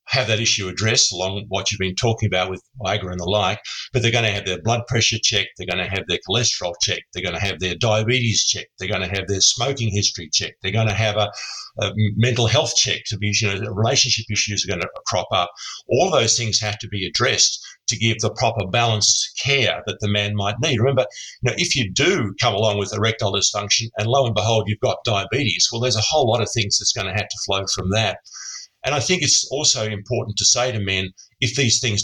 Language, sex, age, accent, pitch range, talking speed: English, male, 50-69, Australian, 100-120 Hz, 230 wpm